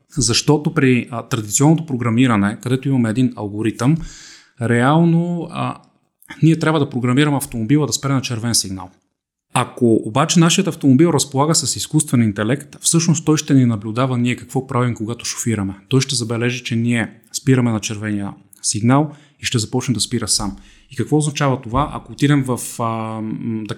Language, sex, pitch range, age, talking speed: Bulgarian, male, 115-140 Hz, 30-49, 160 wpm